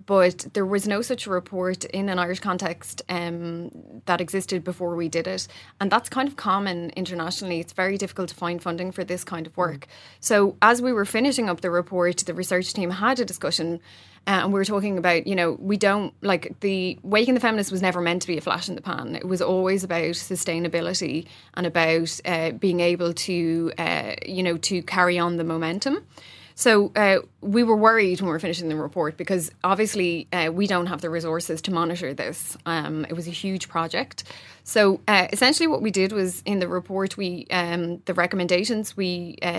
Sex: female